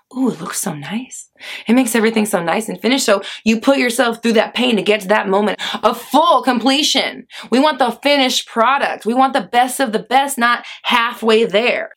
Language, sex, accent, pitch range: English, female, American, 205-265 Hz